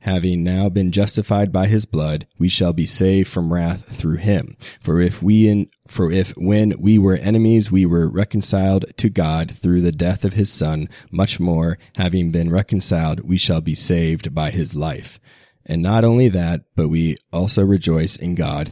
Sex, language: male, English